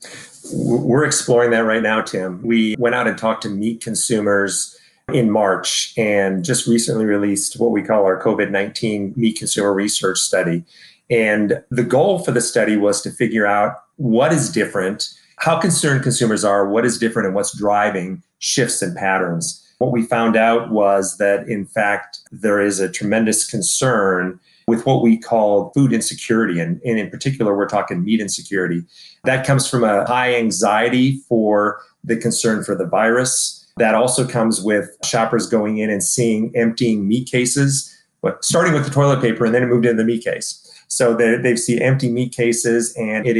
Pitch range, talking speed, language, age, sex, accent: 105-120 Hz, 175 wpm, English, 30-49, male, American